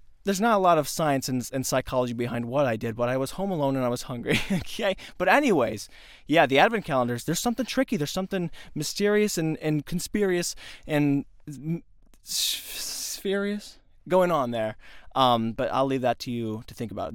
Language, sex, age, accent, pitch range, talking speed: English, male, 20-39, American, 130-195 Hz, 185 wpm